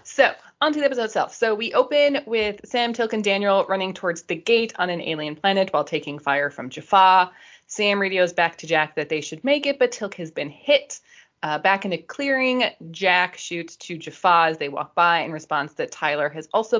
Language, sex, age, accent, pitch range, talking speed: English, female, 20-39, American, 150-210 Hz, 220 wpm